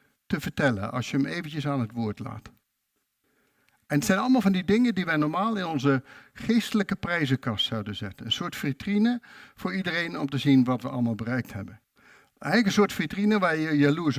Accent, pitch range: Dutch, 120-195 Hz